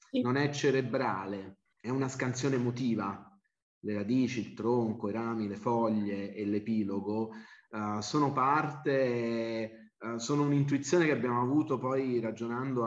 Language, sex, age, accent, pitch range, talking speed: Italian, male, 30-49, native, 105-130 Hz, 120 wpm